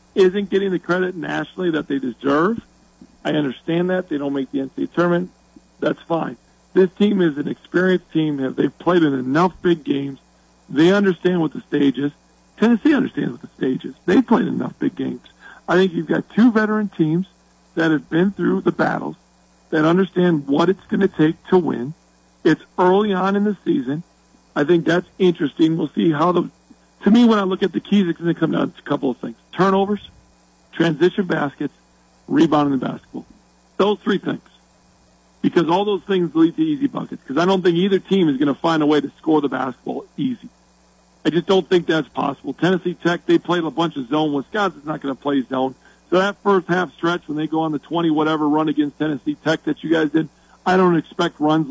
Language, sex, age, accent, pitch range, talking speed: English, male, 50-69, American, 150-185 Hz, 210 wpm